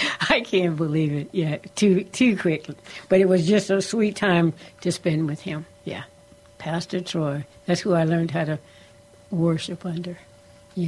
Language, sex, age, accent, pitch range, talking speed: English, female, 60-79, American, 160-190 Hz, 170 wpm